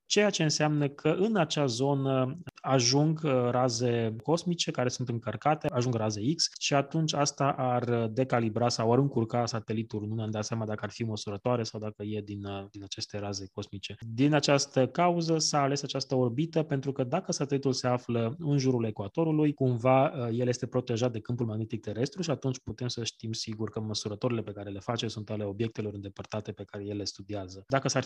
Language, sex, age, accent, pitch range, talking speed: Romanian, male, 20-39, native, 110-140 Hz, 185 wpm